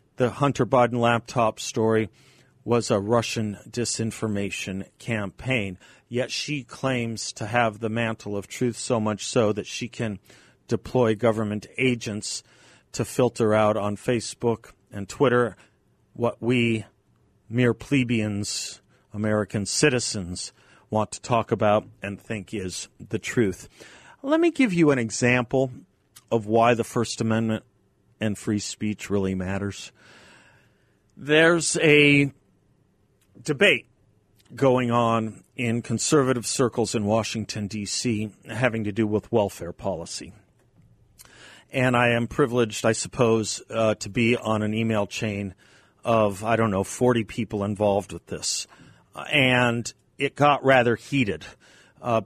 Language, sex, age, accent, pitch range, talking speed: English, male, 40-59, American, 105-125 Hz, 125 wpm